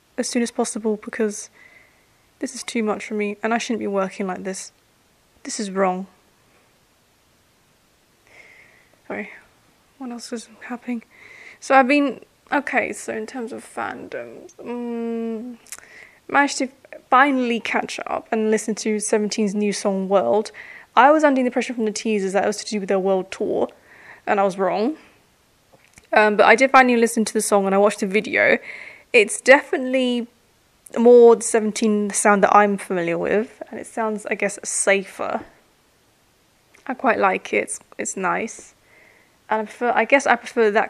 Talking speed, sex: 165 wpm, female